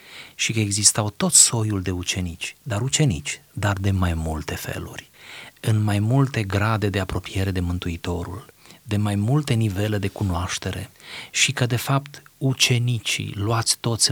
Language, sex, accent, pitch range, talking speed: Romanian, male, native, 100-135 Hz, 150 wpm